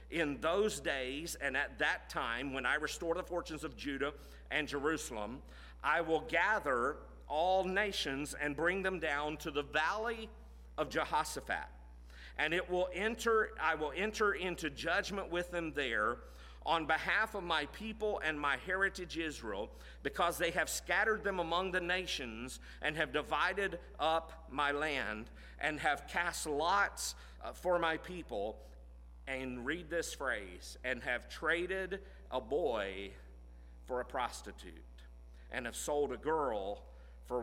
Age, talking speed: 50-69, 145 wpm